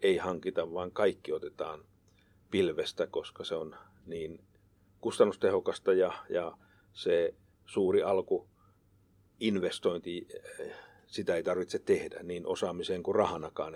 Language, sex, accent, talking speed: Finnish, male, native, 105 wpm